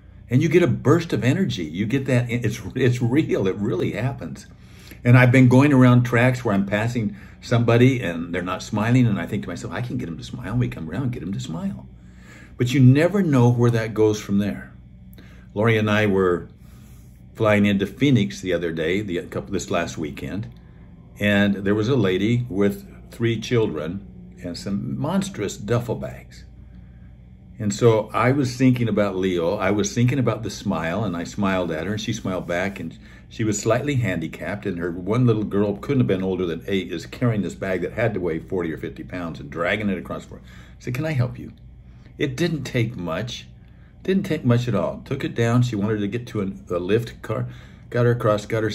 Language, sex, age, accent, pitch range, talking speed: English, male, 50-69, American, 95-125 Hz, 215 wpm